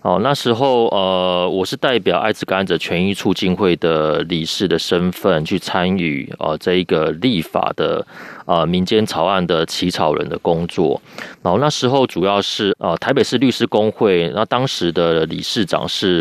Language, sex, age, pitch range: Chinese, male, 30-49, 90-110 Hz